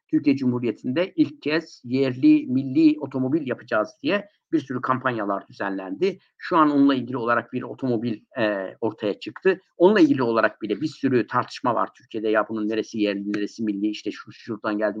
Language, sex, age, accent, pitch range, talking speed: Turkish, male, 50-69, native, 130-205 Hz, 170 wpm